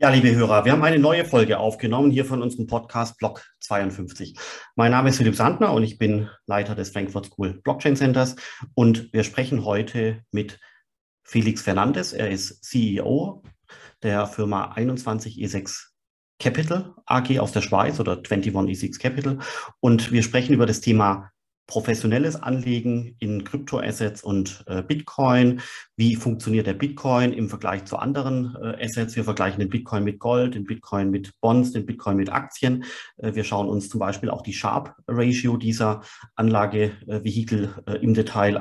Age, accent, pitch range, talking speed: 40-59, German, 105-120 Hz, 155 wpm